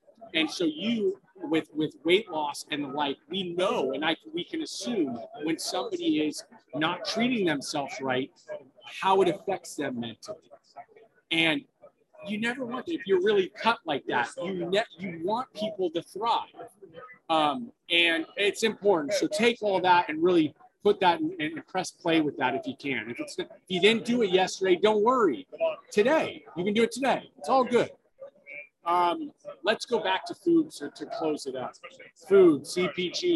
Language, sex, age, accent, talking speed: English, male, 30-49, American, 180 wpm